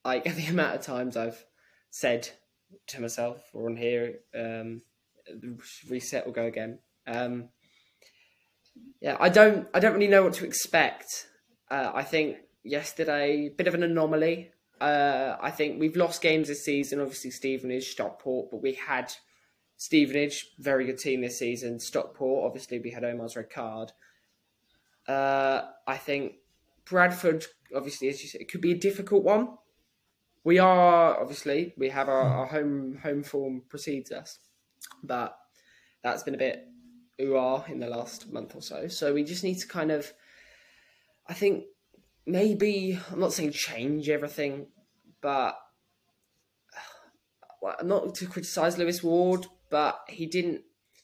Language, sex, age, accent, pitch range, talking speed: English, male, 10-29, British, 130-175 Hz, 150 wpm